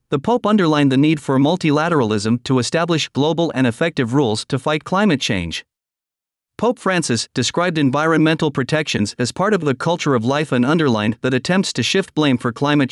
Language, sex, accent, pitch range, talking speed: English, male, American, 130-170 Hz, 175 wpm